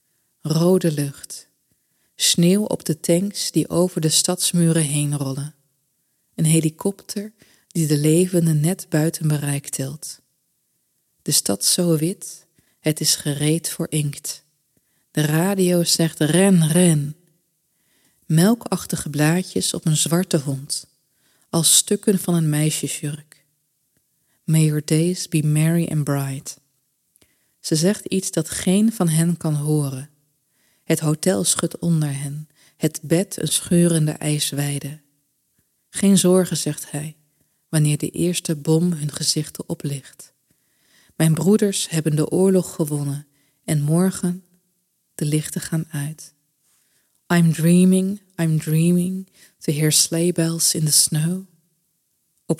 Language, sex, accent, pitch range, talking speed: Dutch, female, Dutch, 150-175 Hz, 120 wpm